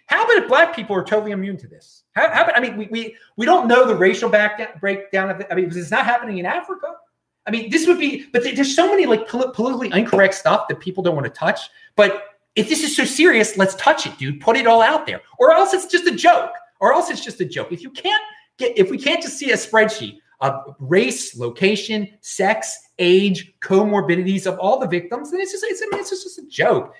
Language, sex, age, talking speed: English, male, 30-49, 250 wpm